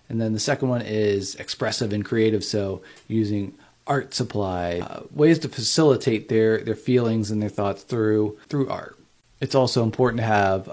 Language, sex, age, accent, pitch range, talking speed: English, male, 30-49, American, 105-130 Hz, 175 wpm